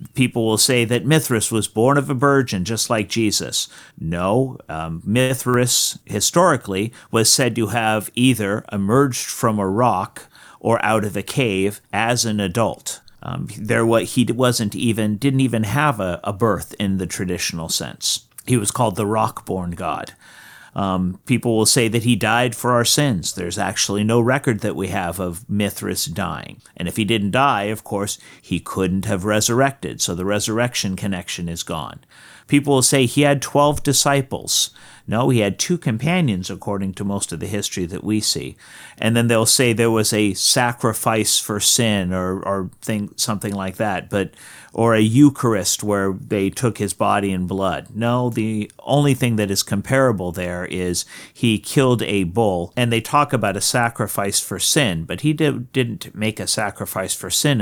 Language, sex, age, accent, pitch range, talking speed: English, male, 50-69, American, 95-120 Hz, 180 wpm